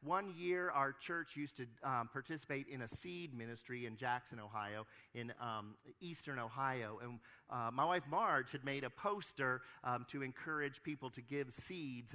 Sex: male